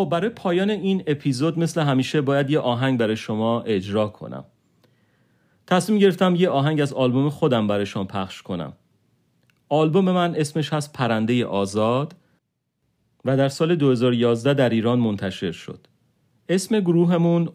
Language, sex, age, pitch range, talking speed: Persian, male, 40-59, 110-145 Hz, 135 wpm